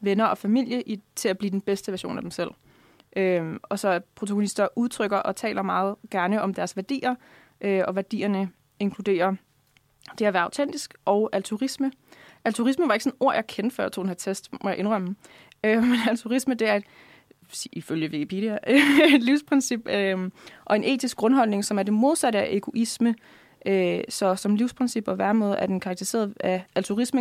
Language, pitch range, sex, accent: Danish, 190-235 Hz, female, native